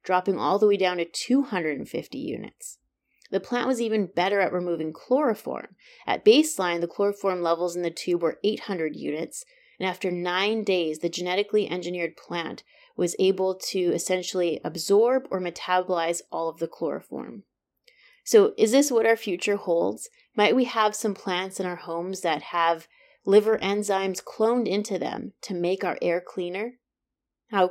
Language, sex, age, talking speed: English, female, 30-49, 160 wpm